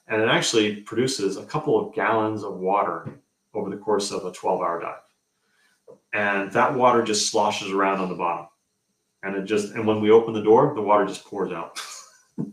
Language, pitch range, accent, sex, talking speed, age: English, 100-130 Hz, American, male, 190 wpm, 30-49